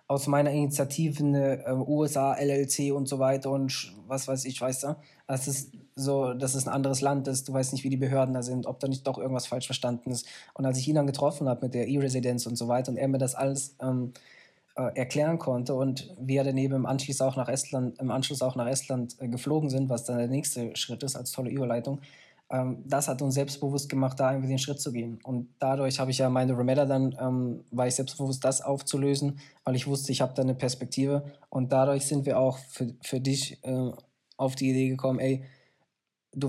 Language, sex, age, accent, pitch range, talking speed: German, male, 20-39, German, 130-140 Hz, 225 wpm